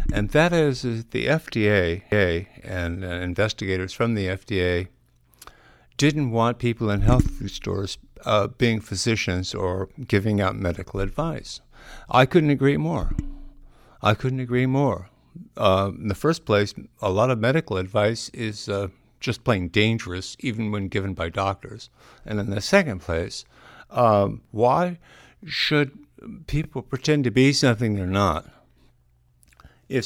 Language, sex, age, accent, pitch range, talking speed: English, male, 60-79, American, 95-135 Hz, 140 wpm